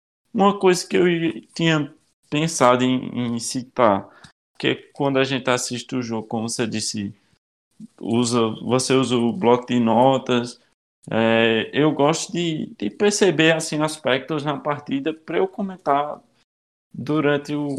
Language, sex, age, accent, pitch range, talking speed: Portuguese, male, 20-39, Brazilian, 120-160 Hz, 125 wpm